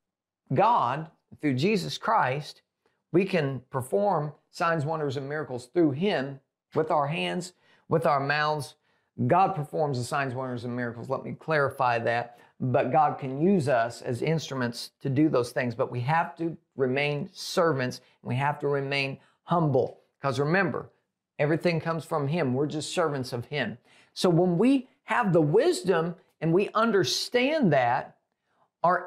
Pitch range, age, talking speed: 135-185 Hz, 50-69, 155 wpm